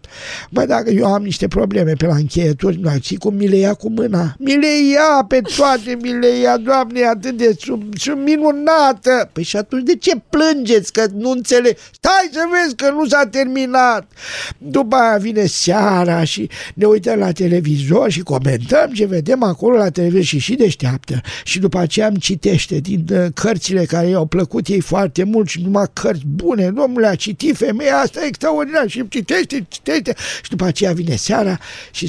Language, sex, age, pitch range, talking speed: Romanian, male, 50-69, 180-260 Hz, 190 wpm